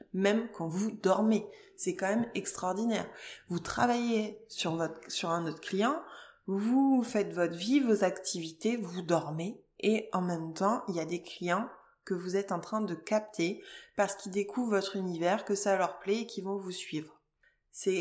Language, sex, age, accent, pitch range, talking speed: French, female, 20-39, French, 175-215 Hz, 185 wpm